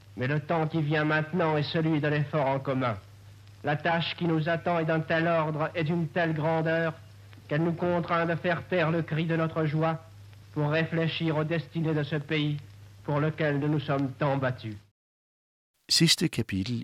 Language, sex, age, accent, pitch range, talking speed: Danish, male, 60-79, native, 85-130 Hz, 120 wpm